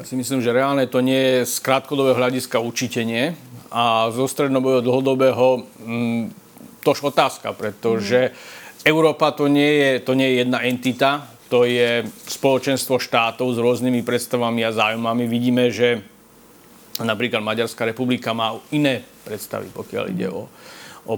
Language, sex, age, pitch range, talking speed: Slovak, male, 40-59, 120-135 Hz, 140 wpm